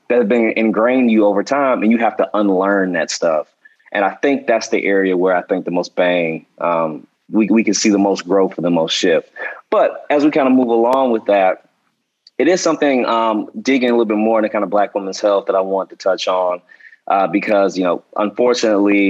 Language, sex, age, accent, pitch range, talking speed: English, male, 20-39, American, 95-110 Hz, 235 wpm